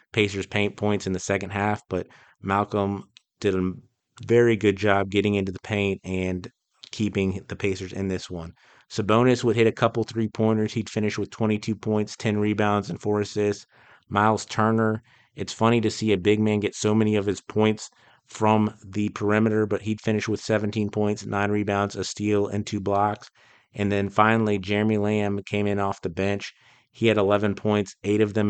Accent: American